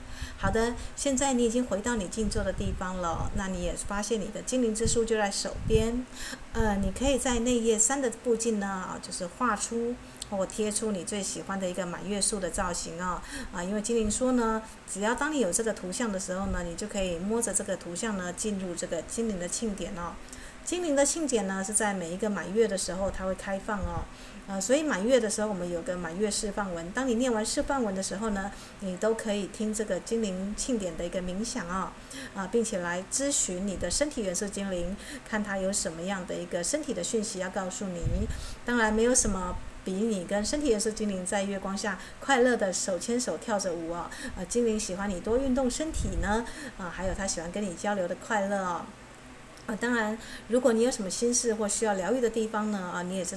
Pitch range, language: 185-230 Hz, Chinese